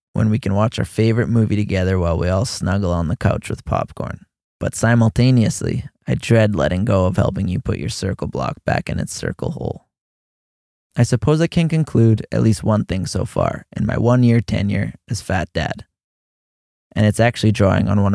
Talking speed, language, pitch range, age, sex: 195 wpm, English, 95-115 Hz, 20-39, male